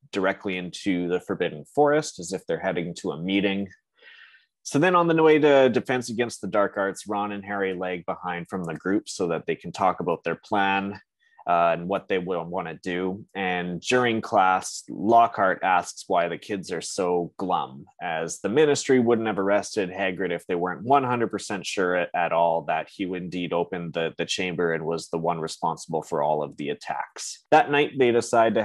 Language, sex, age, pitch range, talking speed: English, male, 20-39, 90-115 Hz, 200 wpm